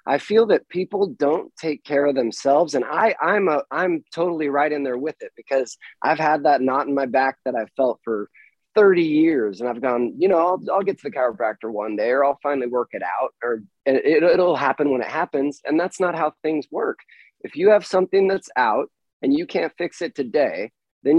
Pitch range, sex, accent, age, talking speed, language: 135-185 Hz, male, American, 30-49, 225 wpm, English